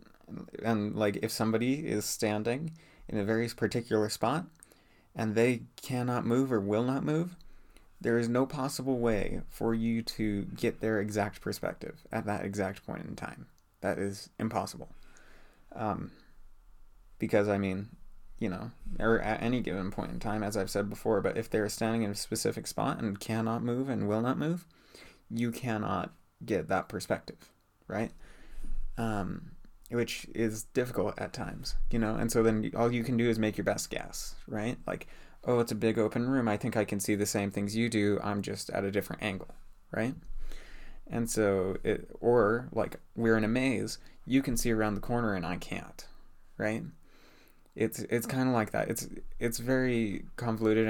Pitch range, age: 105-120 Hz, 30-49